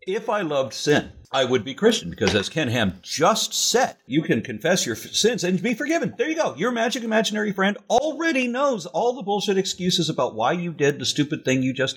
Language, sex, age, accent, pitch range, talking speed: English, male, 50-69, American, 150-225 Hz, 220 wpm